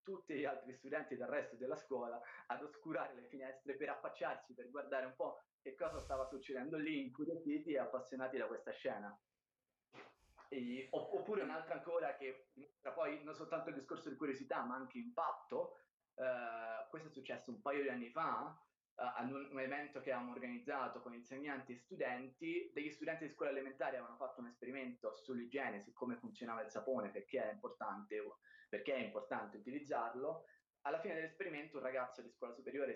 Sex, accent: male, native